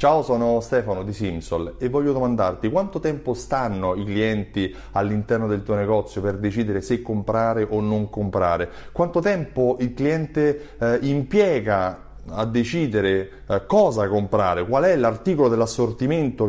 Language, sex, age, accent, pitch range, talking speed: Italian, male, 30-49, native, 105-145 Hz, 140 wpm